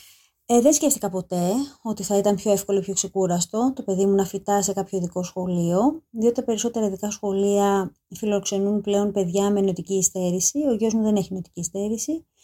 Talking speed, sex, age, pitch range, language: 180 wpm, female, 20-39, 190-235 Hz, Greek